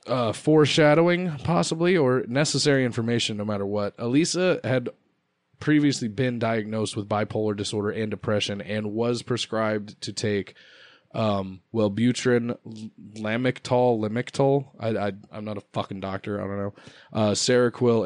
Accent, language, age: American, English, 20-39